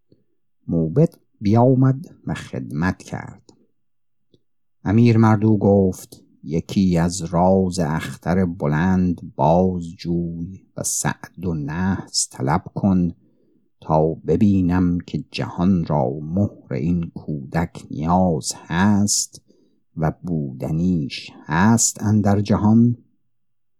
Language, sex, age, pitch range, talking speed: Persian, male, 60-79, 90-120 Hz, 90 wpm